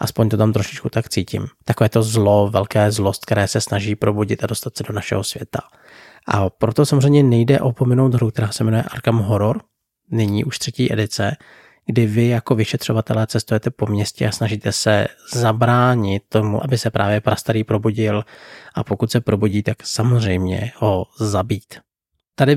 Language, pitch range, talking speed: Czech, 105-120 Hz, 165 wpm